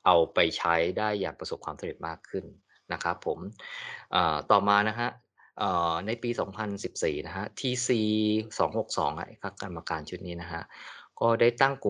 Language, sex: Thai, male